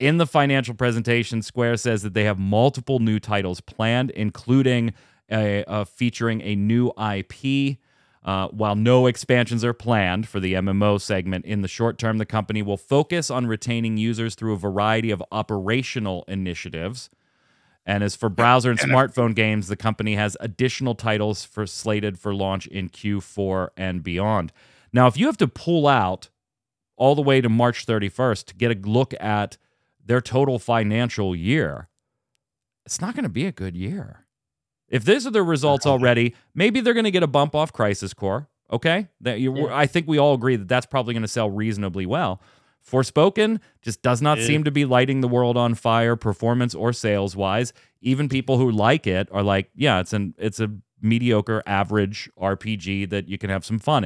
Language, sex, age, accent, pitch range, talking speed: English, male, 30-49, American, 100-125 Hz, 185 wpm